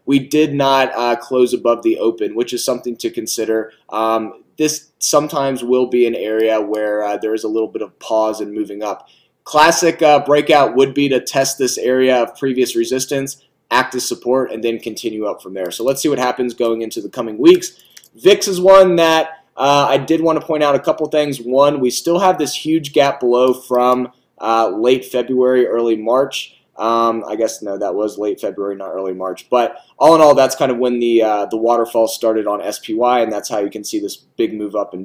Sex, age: male, 20-39